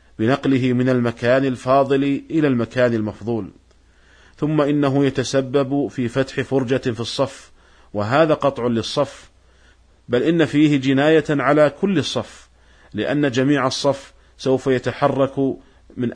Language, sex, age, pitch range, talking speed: Arabic, male, 40-59, 115-145 Hz, 115 wpm